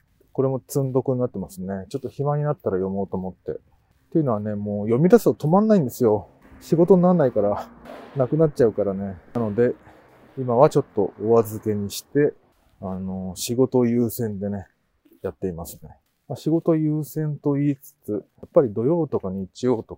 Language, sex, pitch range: Japanese, male, 95-140 Hz